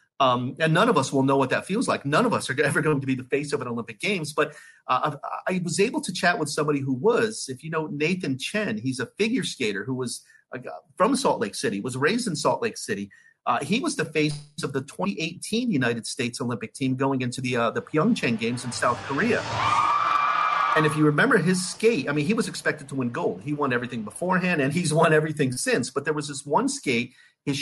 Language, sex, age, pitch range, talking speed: English, male, 40-59, 135-195 Hz, 240 wpm